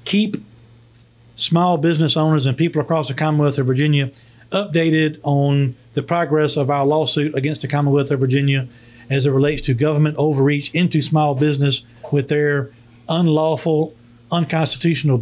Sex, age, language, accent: male, 40-59, English, American